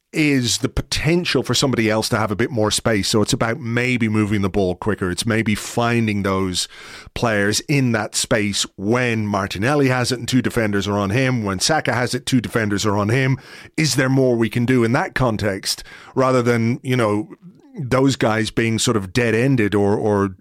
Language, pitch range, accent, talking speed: English, 105-135 Hz, British, 200 wpm